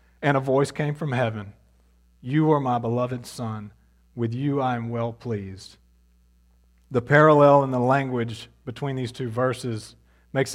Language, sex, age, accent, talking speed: English, male, 40-59, American, 155 wpm